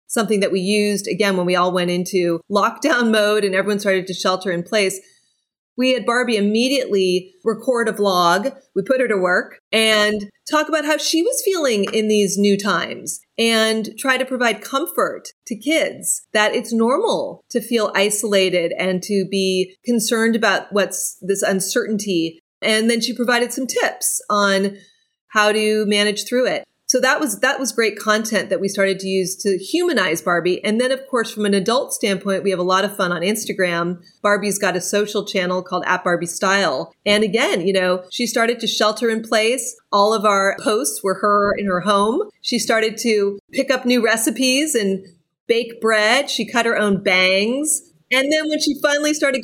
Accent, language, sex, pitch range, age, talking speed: American, English, female, 195-245 Hz, 30-49, 185 wpm